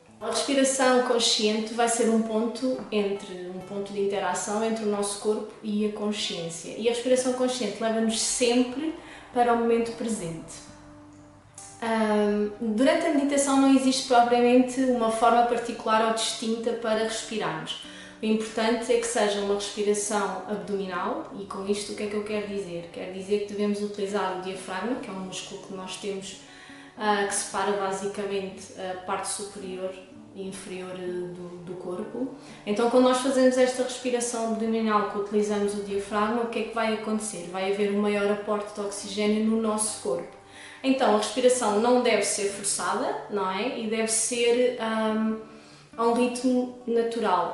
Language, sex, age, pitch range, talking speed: Portuguese, female, 20-39, 200-235 Hz, 160 wpm